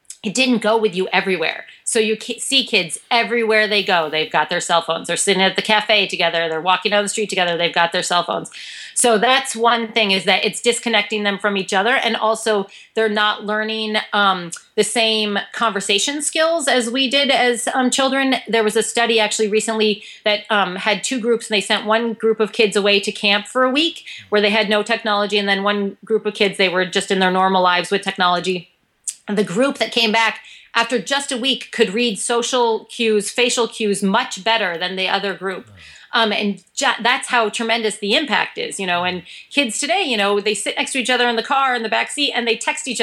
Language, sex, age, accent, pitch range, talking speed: English, female, 30-49, American, 200-245 Hz, 220 wpm